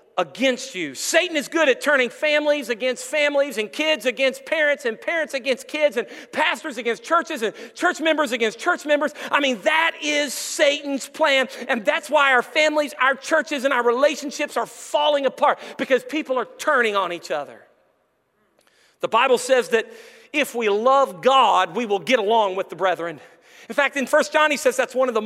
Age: 40-59